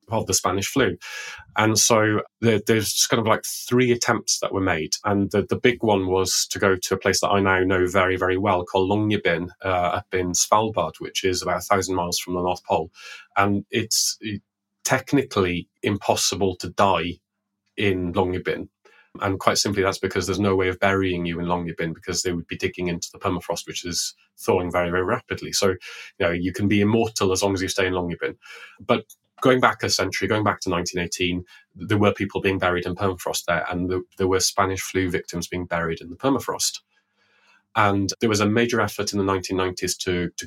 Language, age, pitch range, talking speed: English, 30-49, 90-100 Hz, 210 wpm